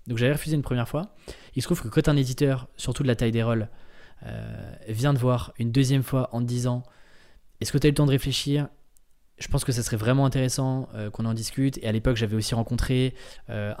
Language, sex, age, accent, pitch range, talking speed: French, male, 20-39, French, 110-130 Hz, 250 wpm